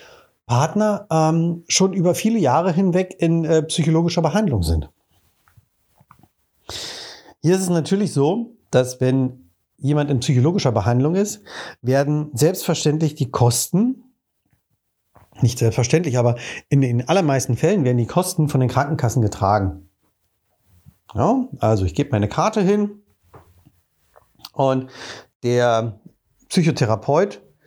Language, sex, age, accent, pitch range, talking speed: German, male, 50-69, German, 115-165 Hz, 110 wpm